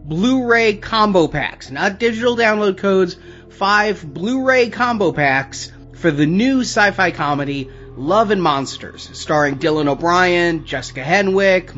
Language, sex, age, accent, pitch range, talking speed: English, male, 30-49, American, 145-195 Hz, 120 wpm